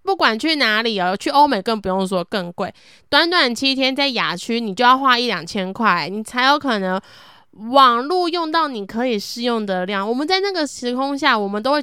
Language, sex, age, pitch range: Chinese, female, 20-39, 195-260 Hz